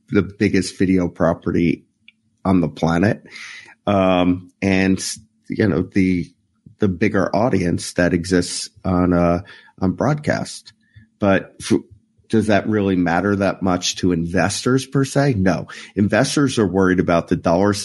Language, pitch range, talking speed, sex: English, 90-110 Hz, 135 wpm, male